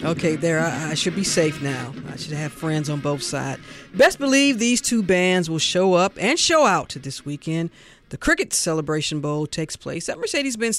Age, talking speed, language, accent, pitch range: 40-59, 205 wpm, English, American, 160-225 Hz